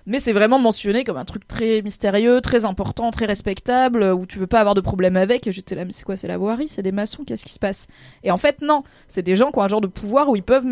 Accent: French